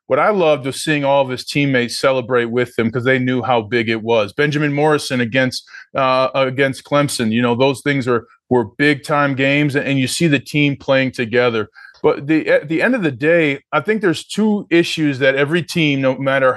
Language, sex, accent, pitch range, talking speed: English, male, American, 130-155 Hz, 215 wpm